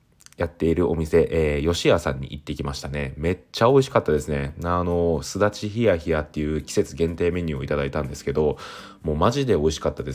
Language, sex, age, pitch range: Japanese, male, 20-39, 75-90 Hz